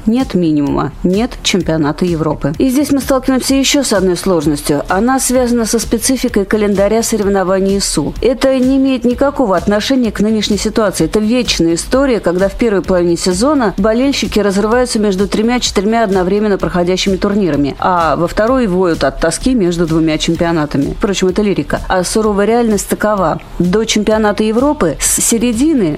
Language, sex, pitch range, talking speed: Russian, female, 180-245 Hz, 150 wpm